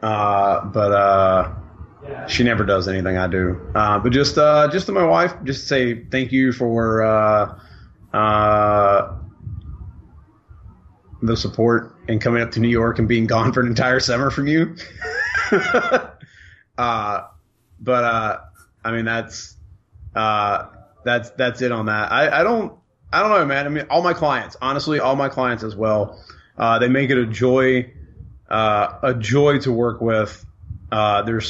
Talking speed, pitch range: 165 wpm, 100-125 Hz